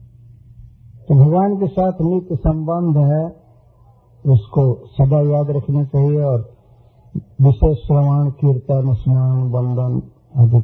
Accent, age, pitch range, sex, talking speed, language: native, 60-79, 120-145 Hz, male, 105 wpm, Hindi